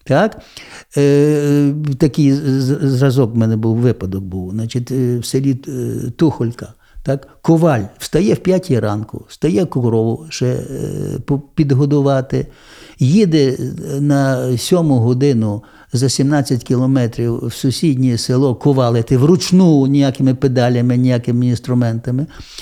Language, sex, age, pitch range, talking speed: Ukrainian, male, 60-79, 125-165 Hz, 100 wpm